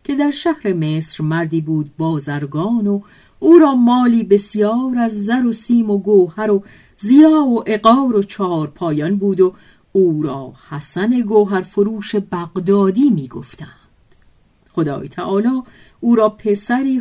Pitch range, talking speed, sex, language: 155-230 Hz, 140 wpm, female, Persian